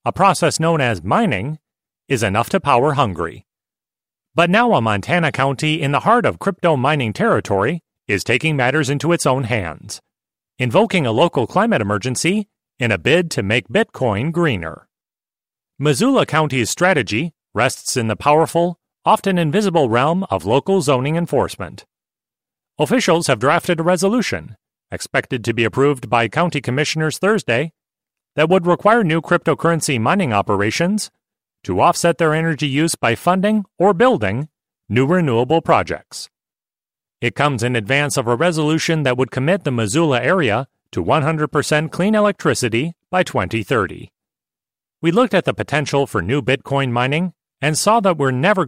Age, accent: 30-49, American